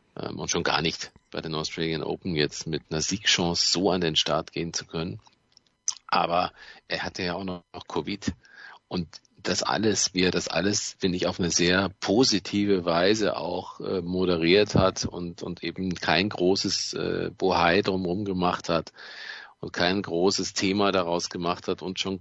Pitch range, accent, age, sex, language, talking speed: 90-110 Hz, German, 40-59, male, German, 175 wpm